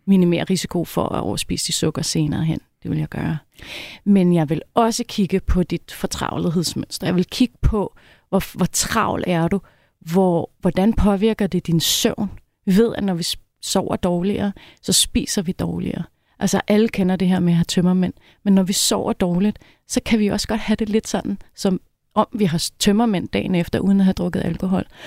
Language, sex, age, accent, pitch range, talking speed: Danish, female, 30-49, native, 180-215 Hz, 195 wpm